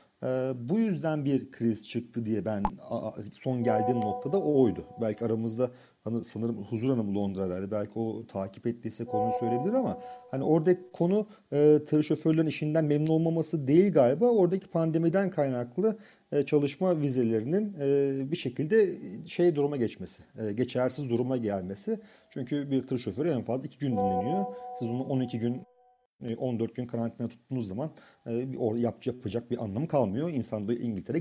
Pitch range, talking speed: 120-170 Hz, 140 wpm